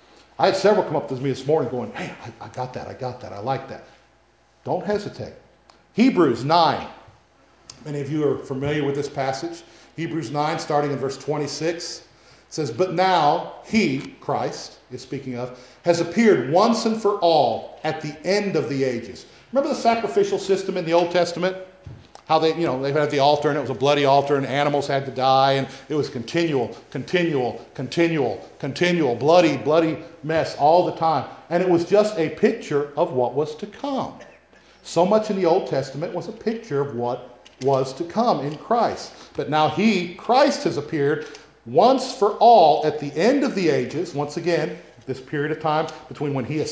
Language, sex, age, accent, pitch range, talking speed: English, male, 50-69, American, 140-175 Hz, 195 wpm